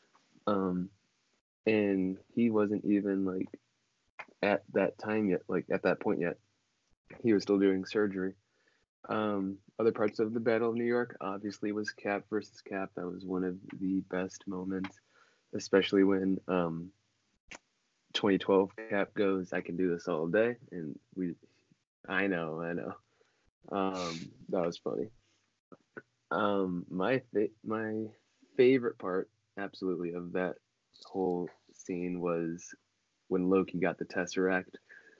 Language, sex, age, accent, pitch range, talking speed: English, male, 20-39, American, 95-110 Hz, 135 wpm